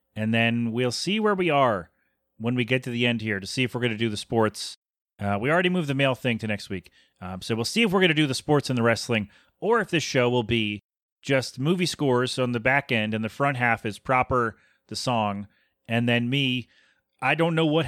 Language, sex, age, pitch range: English, male, 30-49, 115-155 Hz